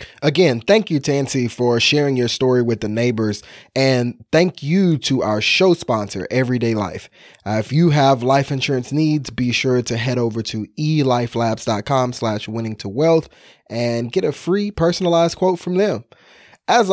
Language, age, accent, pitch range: English, 20-39, American, 125-180 Hz